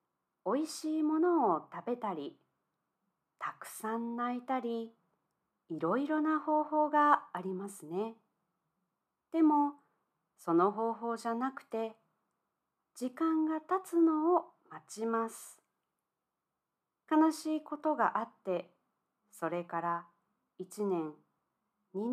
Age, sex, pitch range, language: 40-59, female, 195-300 Hz, Japanese